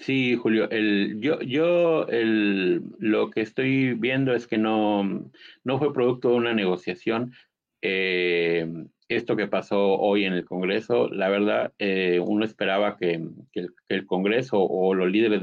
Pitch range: 90-110 Hz